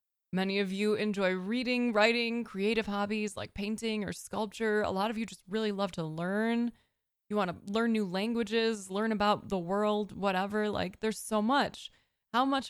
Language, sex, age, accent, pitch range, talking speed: English, female, 20-39, American, 190-230 Hz, 180 wpm